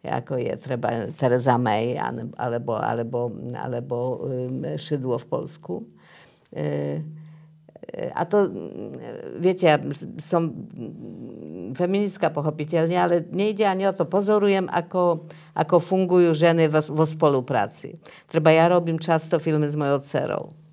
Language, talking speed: Slovak, 100 wpm